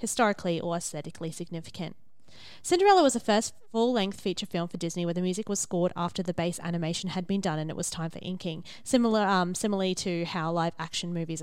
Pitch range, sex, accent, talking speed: 185-230 Hz, female, Australian, 200 wpm